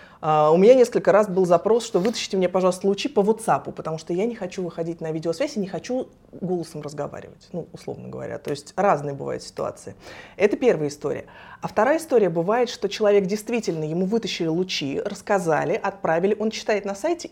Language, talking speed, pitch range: Russian, 185 wpm, 170-225 Hz